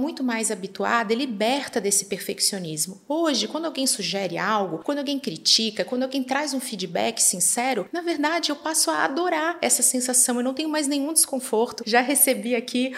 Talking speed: 175 wpm